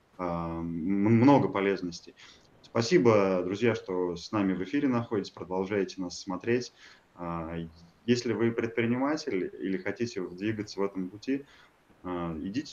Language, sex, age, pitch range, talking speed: Russian, male, 20-39, 90-115 Hz, 110 wpm